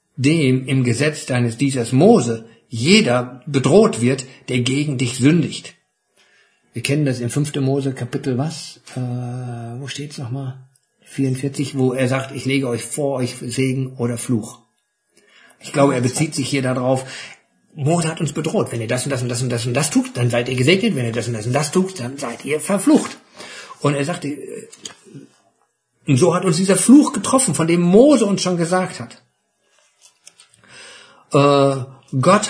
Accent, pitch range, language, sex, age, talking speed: German, 130-170 Hz, German, male, 50-69, 175 wpm